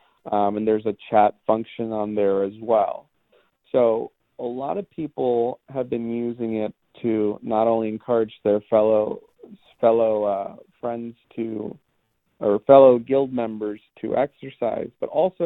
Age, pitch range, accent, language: 40-59, 105-120 Hz, American, English